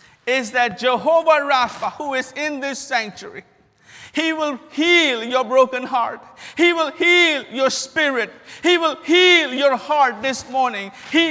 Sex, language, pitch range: male, English, 185-260 Hz